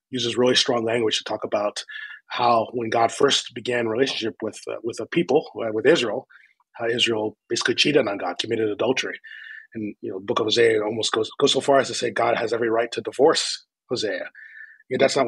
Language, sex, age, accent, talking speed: English, male, 30-49, American, 210 wpm